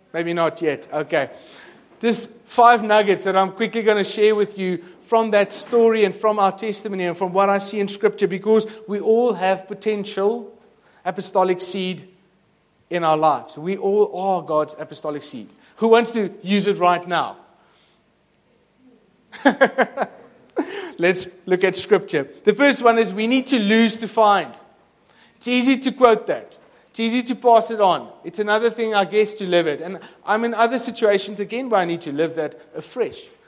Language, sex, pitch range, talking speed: English, male, 170-220 Hz, 175 wpm